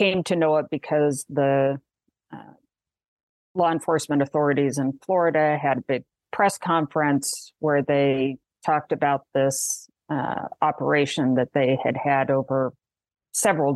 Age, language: 50-69, English